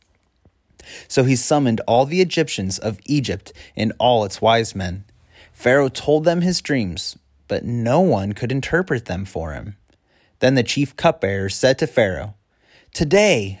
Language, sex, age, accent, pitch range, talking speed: English, male, 30-49, American, 105-155 Hz, 150 wpm